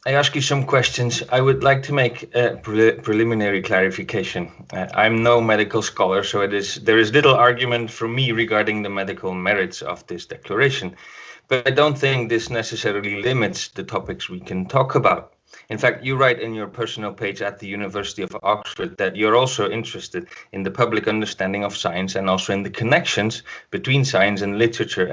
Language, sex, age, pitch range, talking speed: English, male, 30-49, 100-130 Hz, 180 wpm